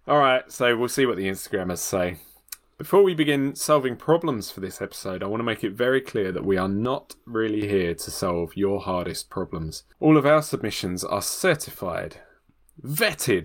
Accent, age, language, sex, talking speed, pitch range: British, 20-39, English, male, 185 wpm, 90-135 Hz